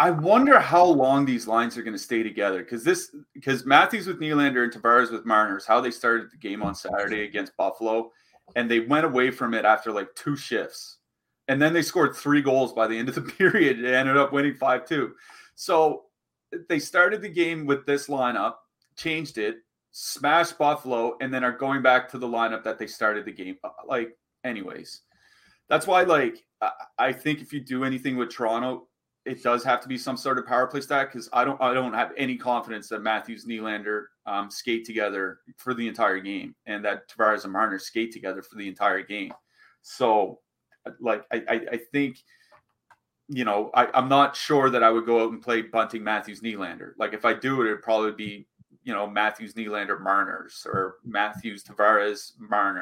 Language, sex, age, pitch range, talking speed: English, male, 30-49, 110-140 Hz, 200 wpm